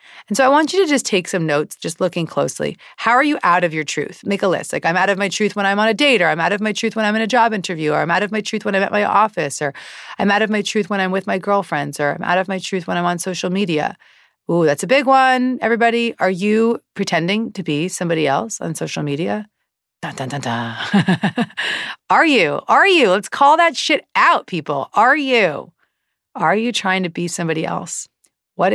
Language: English